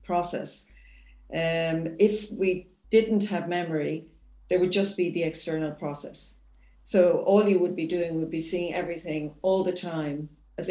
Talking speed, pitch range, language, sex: 155 wpm, 160-195 Hz, English, female